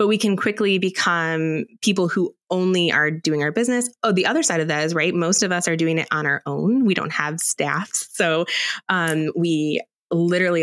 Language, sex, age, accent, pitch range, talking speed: English, female, 20-39, American, 165-200 Hz, 210 wpm